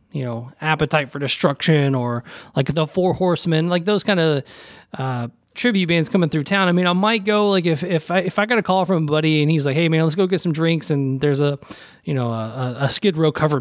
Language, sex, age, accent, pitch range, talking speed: English, male, 30-49, American, 140-175 Hz, 250 wpm